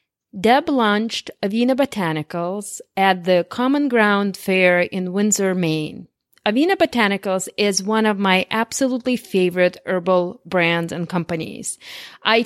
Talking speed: 120 wpm